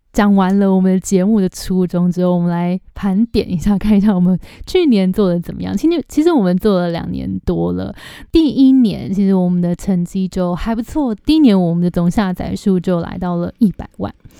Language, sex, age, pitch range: Chinese, female, 20-39, 180-215 Hz